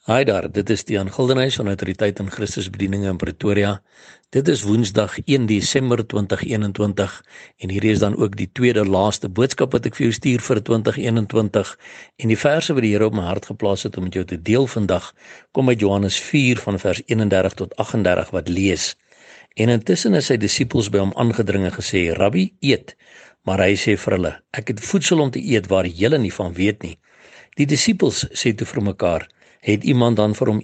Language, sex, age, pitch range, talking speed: English, male, 60-79, 95-120 Hz, 190 wpm